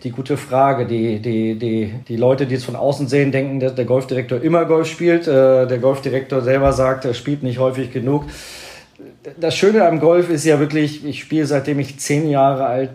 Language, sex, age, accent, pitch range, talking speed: German, male, 40-59, German, 110-130 Hz, 200 wpm